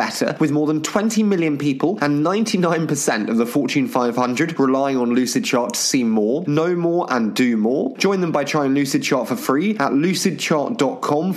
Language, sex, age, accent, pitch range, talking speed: English, male, 20-39, British, 120-180 Hz, 175 wpm